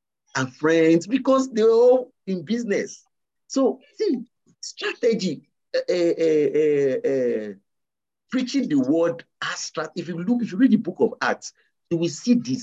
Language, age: English, 50-69